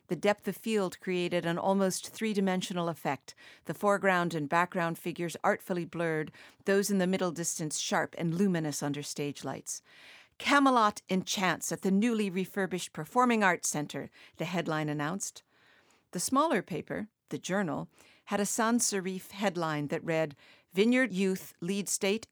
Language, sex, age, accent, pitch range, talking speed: English, female, 50-69, American, 160-200 Hz, 145 wpm